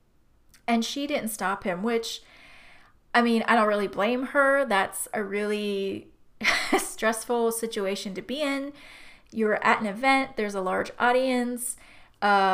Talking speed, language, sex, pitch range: 145 wpm, English, female, 200-245 Hz